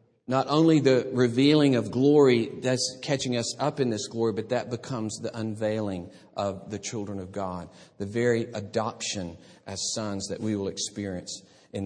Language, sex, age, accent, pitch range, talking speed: English, male, 50-69, American, 115-160 Hz, 165 wpm